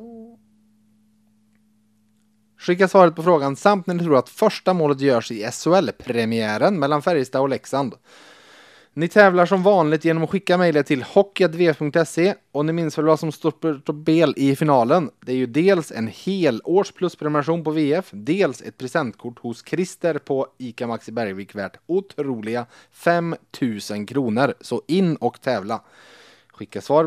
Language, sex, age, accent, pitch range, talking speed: Swedish, male, 30-49, Norwegian, 120-175 Hz, 145 wpm